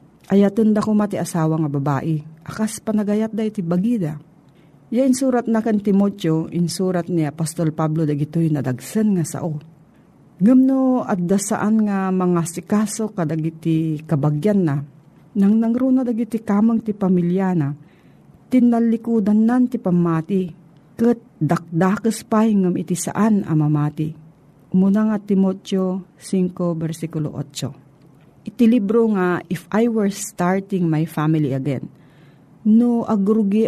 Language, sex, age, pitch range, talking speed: Filipino, female, 50-69, 160-215 Hz, 125 wpm